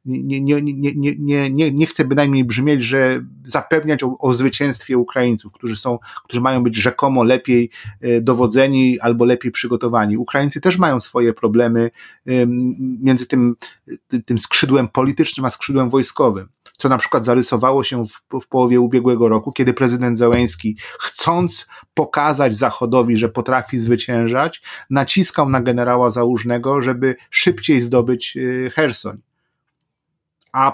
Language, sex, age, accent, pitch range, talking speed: Polish, male, 30-49, native, 120-145 Hz, 130 wpm